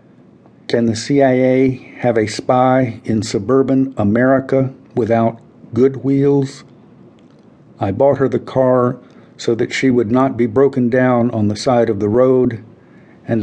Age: 50-69